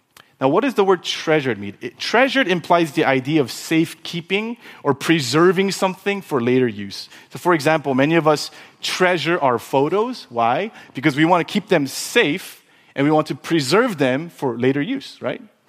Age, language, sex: 30-49, English, male